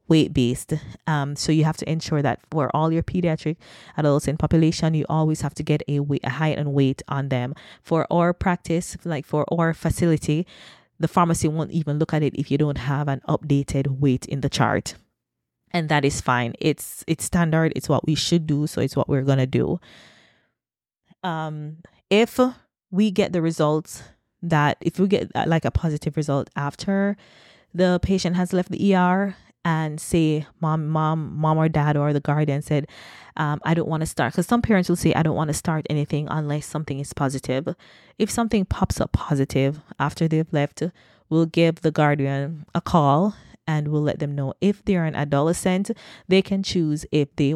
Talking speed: 190 wpm